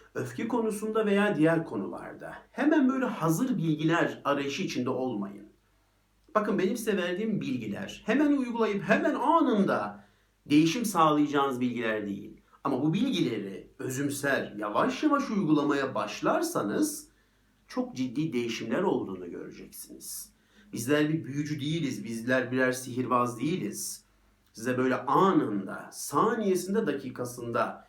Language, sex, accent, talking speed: Turkish, male, native, 110 wpm